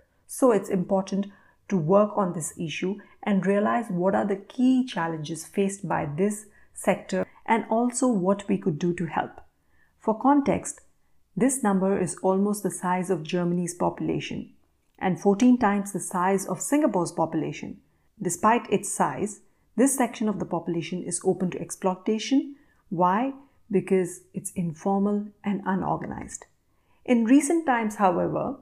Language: Hindi